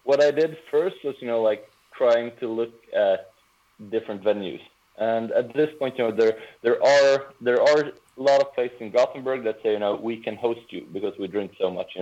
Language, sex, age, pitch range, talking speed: English, male, 20-39, 100-140 Hz, 225 wpm